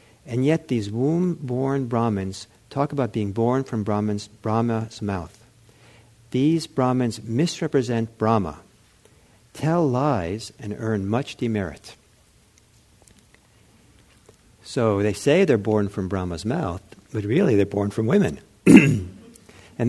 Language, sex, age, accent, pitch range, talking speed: English, male, 60-79, American, 100-125 Hz, 110 wpm